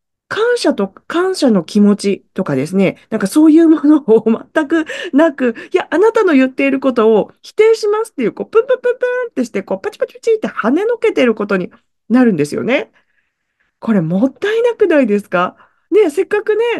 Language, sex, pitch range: Japanese, female, 225-375 Hz